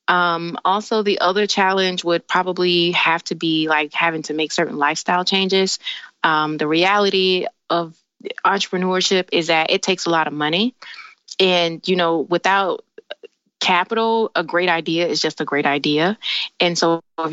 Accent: American